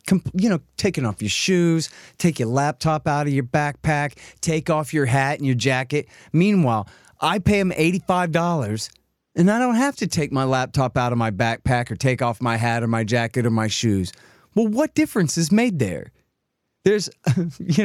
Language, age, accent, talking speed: English, 30-49, American, 190 wpm